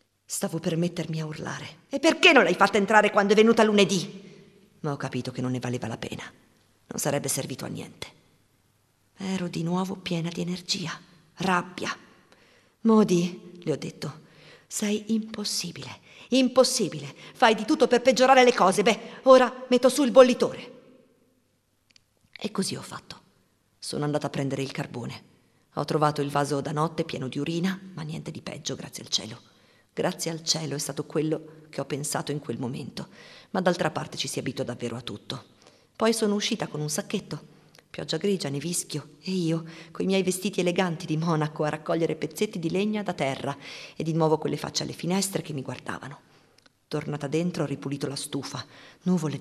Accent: native